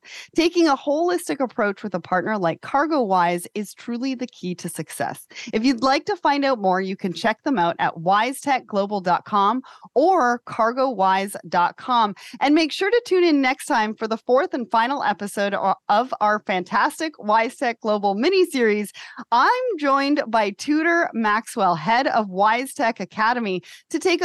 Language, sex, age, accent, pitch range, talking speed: English, female, 30-49, American, 195-285 Hz, 155 wpm